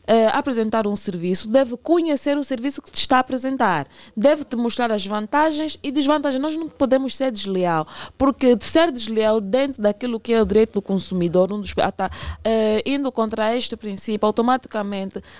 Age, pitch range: 20-39, 210-270 Hz